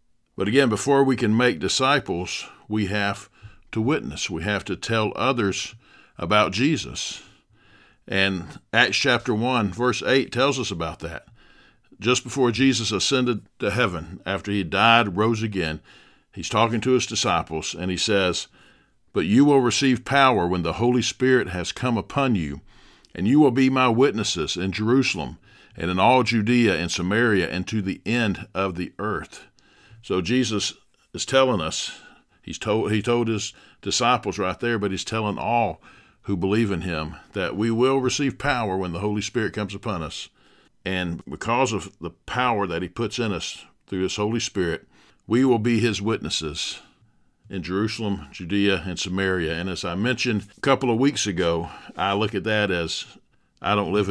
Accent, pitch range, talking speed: American, 95-120 Hz, 170 wpm